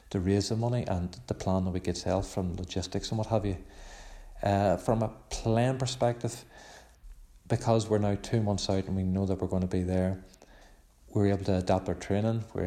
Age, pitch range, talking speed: 40-59, 90-100 Hz, 210 wpm